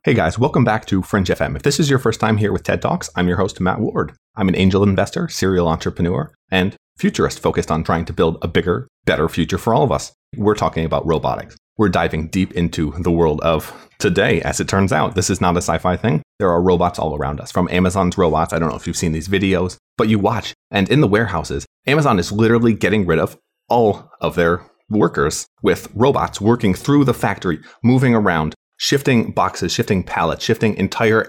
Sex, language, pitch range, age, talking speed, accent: male, English, 90-110 Hz, 30-49, 215 wpm, American